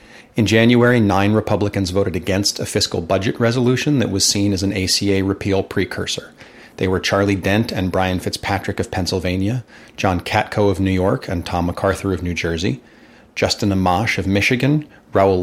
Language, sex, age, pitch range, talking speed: English, male, 40-59, 95-110 Hz, 165 wpm